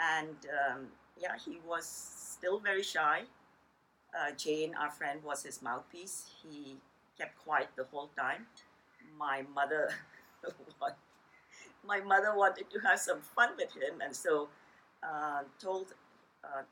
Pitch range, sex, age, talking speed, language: 140-190 Hz, female, 50-69, 135 wpm, English